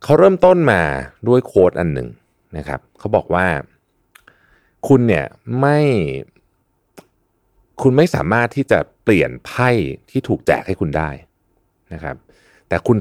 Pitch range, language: 80-120 Hz, Thai